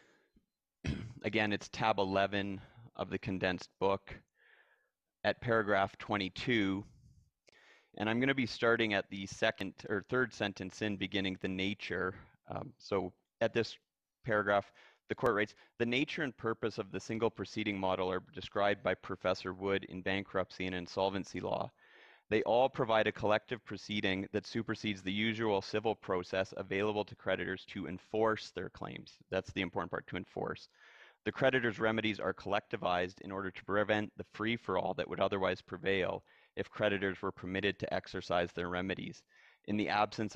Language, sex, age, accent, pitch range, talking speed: English, male, 30-49, American, 95-110 Hz, 155 wpm